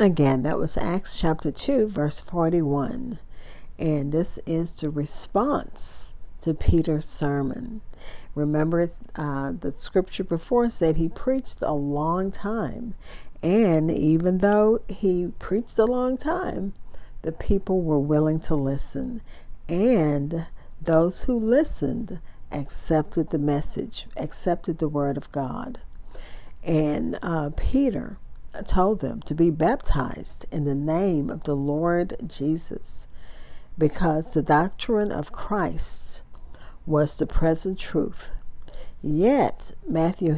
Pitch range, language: 150-200 Hz, English